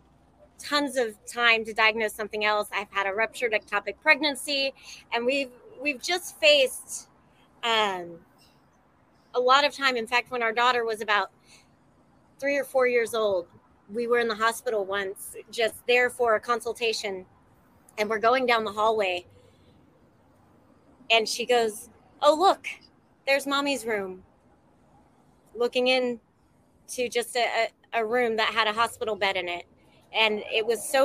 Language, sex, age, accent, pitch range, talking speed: English, female, 30-49, American, 210-255 Hz, 150 wpm